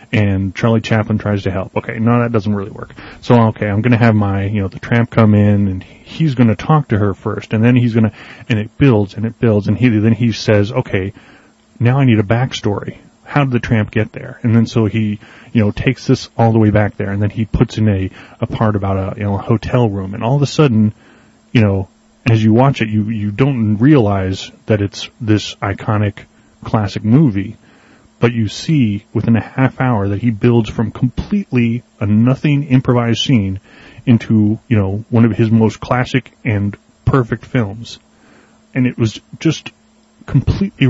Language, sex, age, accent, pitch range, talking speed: English, male, 30-49, American, 105-125 Hz, 205 wpm